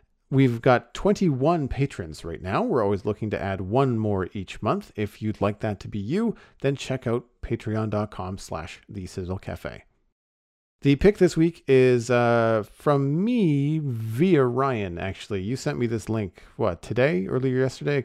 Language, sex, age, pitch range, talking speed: English, male, 40-59, 100-130 Hz, 160 wpm